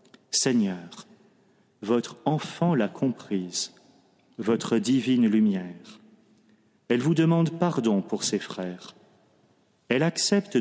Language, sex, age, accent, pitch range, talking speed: French, male, 40-59, French, 110-165 Hz, 95 wpm